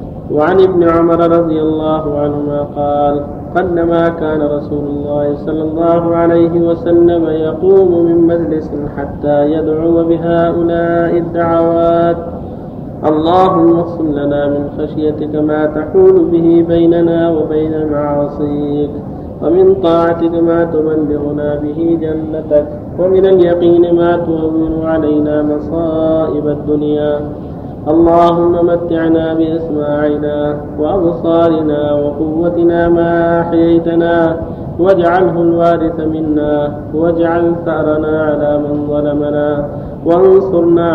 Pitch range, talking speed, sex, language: 150-170 Hz, 90 wpm, male, Arabic